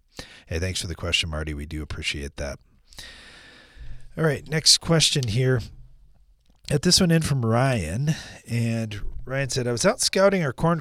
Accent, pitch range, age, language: American, 100-135 Hz, 40-59, English